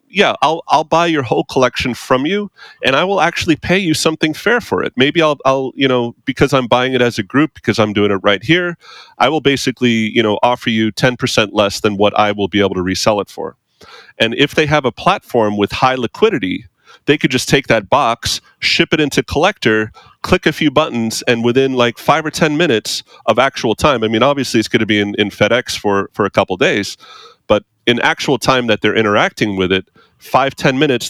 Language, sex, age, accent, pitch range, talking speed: English, male, 30-49, American, 110-145 Hz, 225 wpm